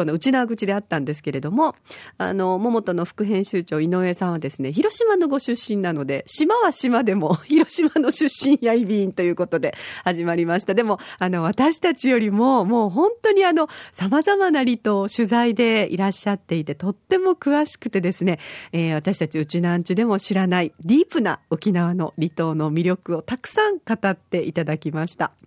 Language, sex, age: Japanese, female, 40-59